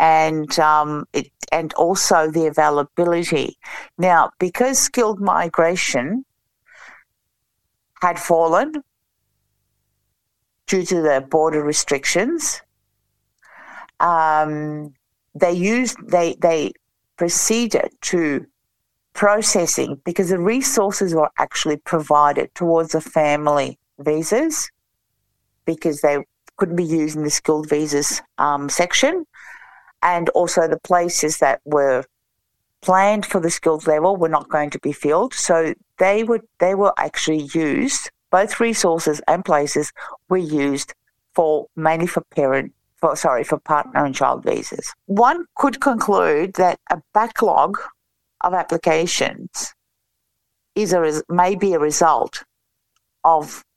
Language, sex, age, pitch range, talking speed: Filipino, female, 50-69, 150-190 Hz, 115 wpm